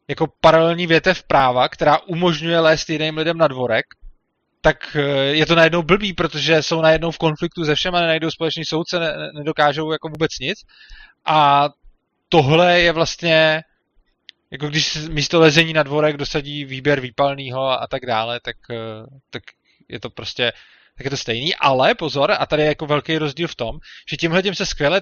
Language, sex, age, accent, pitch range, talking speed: Czech, male, 20-39, native, 145-170 Hz, 170 wpm